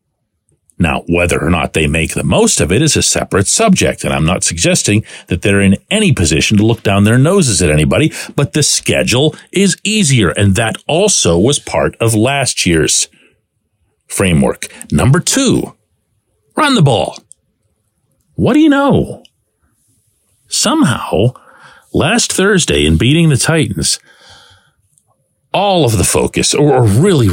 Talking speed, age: 145 wpm, 50-69